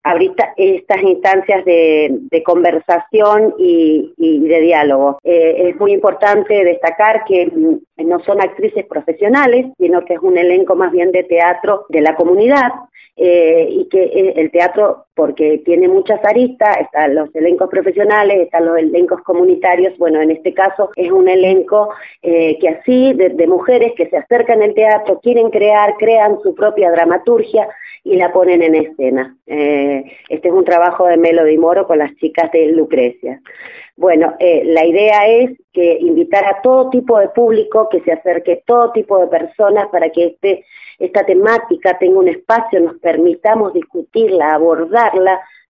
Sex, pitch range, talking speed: female, 170-215 Hz, 160 wpm